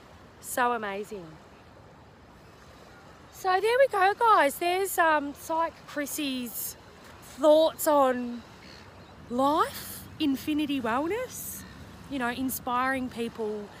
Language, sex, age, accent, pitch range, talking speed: English, female, 20-39, Australian, 200-275 Hz, 85 wpm